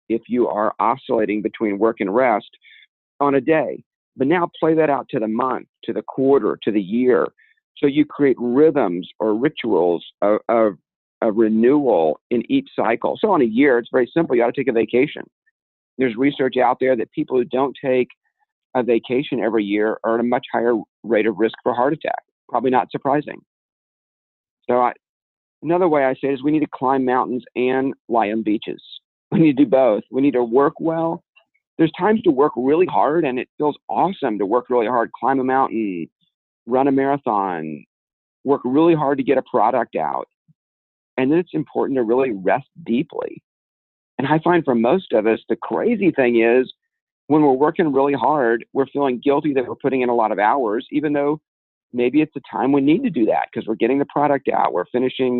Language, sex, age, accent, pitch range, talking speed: English, male, 50-69, American, 115-150 Hz, 200 wpm